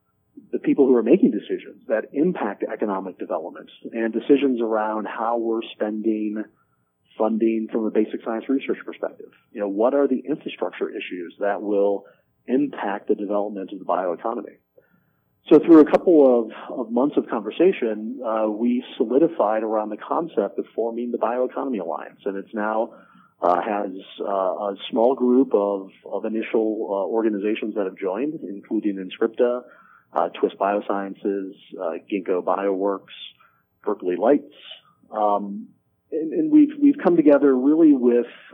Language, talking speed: English, 145 wpm